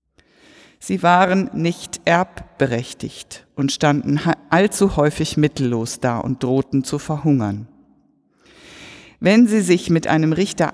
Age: 60-79